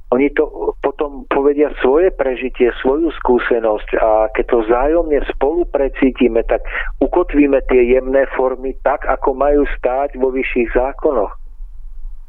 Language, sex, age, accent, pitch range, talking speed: Czech, male, 40-59, native, 110-135 Hz, 120 wpm